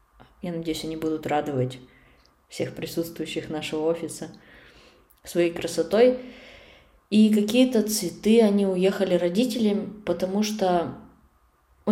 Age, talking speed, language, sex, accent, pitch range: 20-39, 100 wpm, Russian, female, native, 160-195 Hz